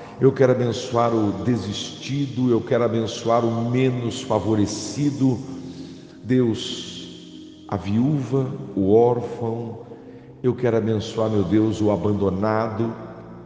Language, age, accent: English, 60-79, Brazilian